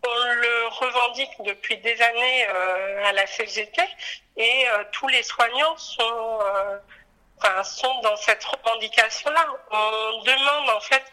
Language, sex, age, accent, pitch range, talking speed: French, female, 50-69, French, 215-270 Hz, 130 wpm